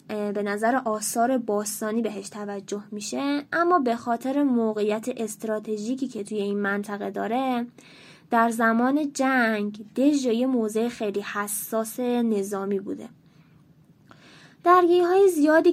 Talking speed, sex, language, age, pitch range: 110 wpm, female, Persian, 20-39, 215-255 Hz